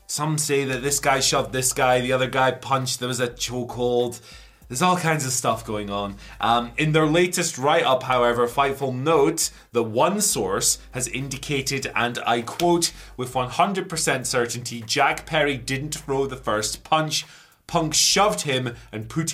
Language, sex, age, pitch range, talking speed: English, male, 20-39, 120-155 Hz, 170 wpm